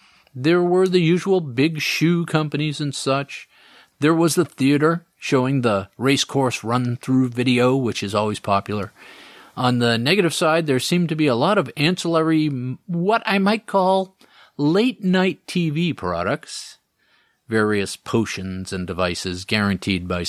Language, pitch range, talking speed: English, 110-170 Hz, 140 wpm